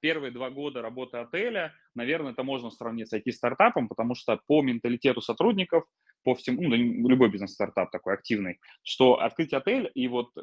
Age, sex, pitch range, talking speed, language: 20-39, male, 110-135 Hz, 160 wpm, Russian